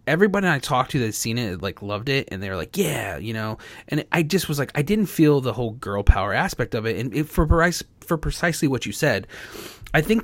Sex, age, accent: male, 30-49, American